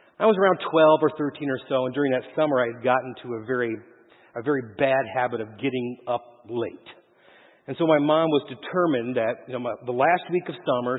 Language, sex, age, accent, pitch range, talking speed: English, male, 40-59, American, 135-180 Hz, 225 wpm